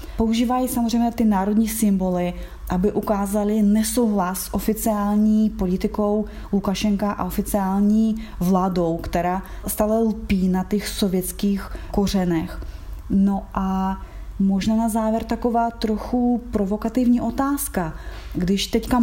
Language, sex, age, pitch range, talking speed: Slovak, female, 20-39, 190-220 Hz, 105 wpm